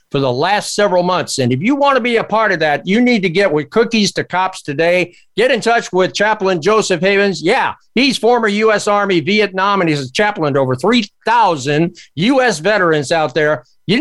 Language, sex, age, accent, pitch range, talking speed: English, male, 50-69, American, 170-220 Hz, 210 wpm